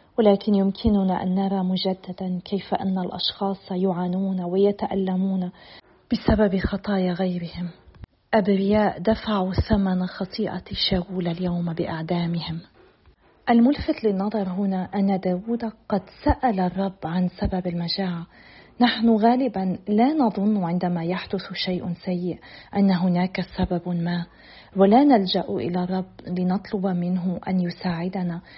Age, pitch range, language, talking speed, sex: 40-59, 180-205 Hz, Arabic, 105 wpm, female